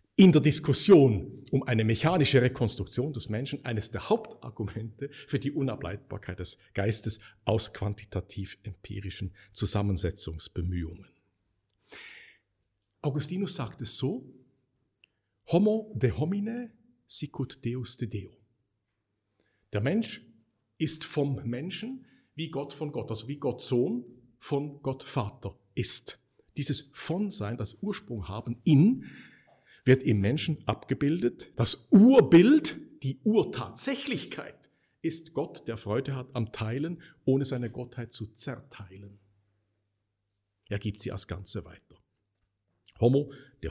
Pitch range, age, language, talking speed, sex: 100-145 Hz, 50-69, German, 115 wpm, male